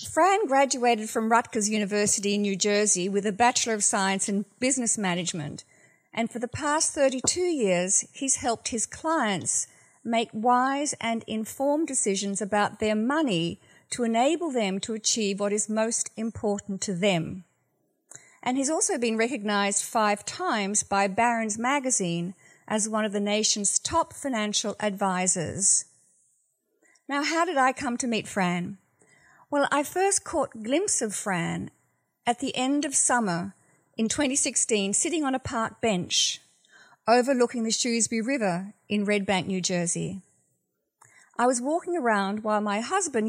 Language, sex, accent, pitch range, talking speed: English, female, Australian, 205-265 Hz, 145 wpm